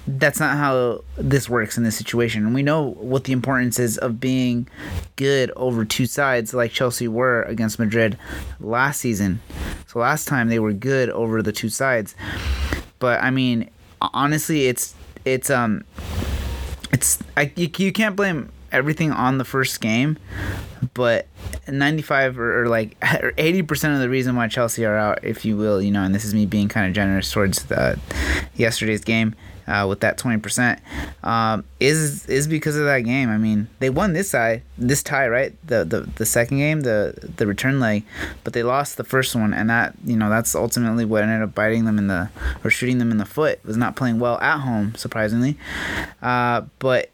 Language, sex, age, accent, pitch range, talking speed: English, male, 30-49, American, 105-130 Hz, 195 wpm